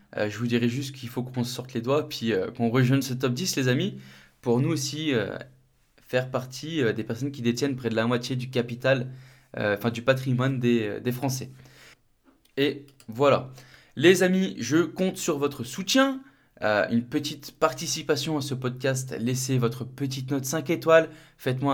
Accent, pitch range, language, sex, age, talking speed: French, 125-150 Hz, French, male, 20-39, 190 wpm